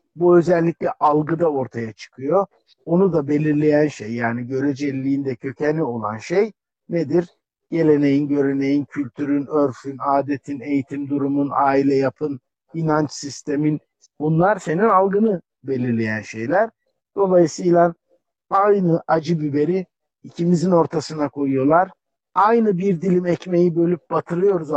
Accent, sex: native, male